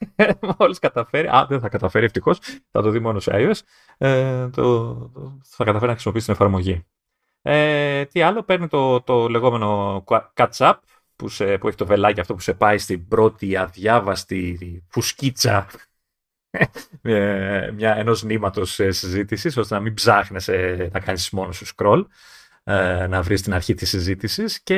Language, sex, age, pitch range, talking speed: Greek, male, 30-49, 95-140 Hz, 155 wpm